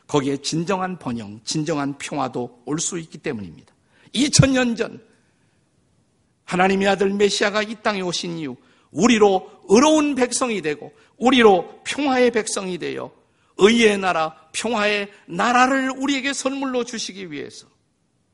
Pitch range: 180-250 Hz